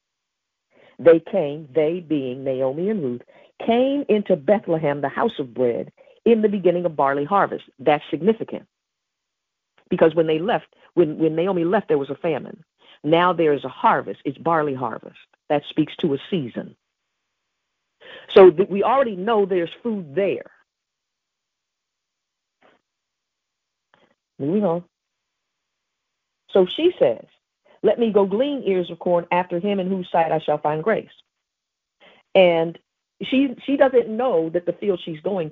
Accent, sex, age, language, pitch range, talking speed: American, female, 50-69, English, 160-205 Hz, 145 wpm